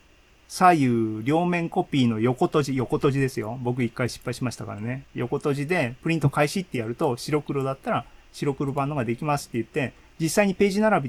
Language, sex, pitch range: Japanese, male, 125-175 Hz